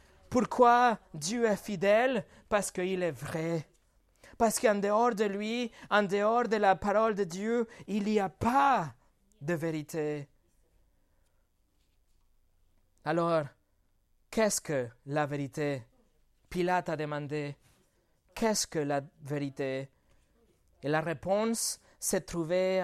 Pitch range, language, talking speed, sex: 155-225 Hz, French, 115 wpm, male